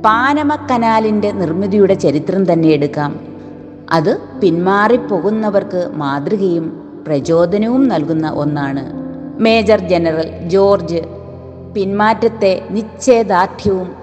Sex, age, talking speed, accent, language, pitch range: female, 30-49, 75 wpm, native, Malayalam, 160-205 Hz